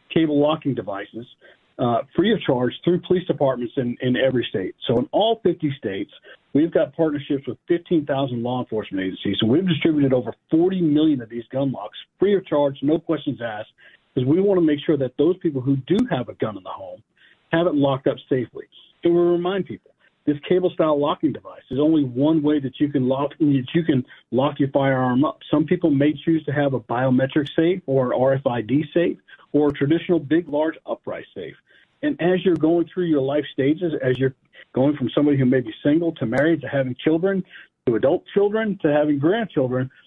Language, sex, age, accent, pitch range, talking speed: English, male, 50-69, American, 130-165 Hz, 205 wpm